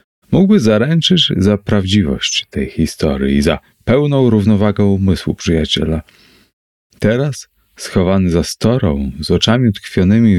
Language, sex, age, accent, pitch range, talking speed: Polish, male, 30-49, native, 85-115 Hz, 110 wpm